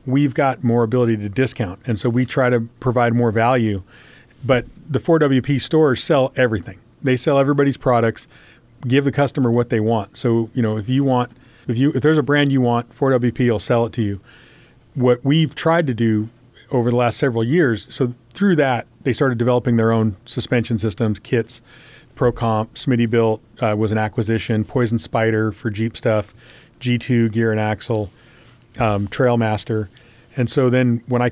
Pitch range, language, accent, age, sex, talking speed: 110-125 Hz, English, American, 40-59, male, 180 wpm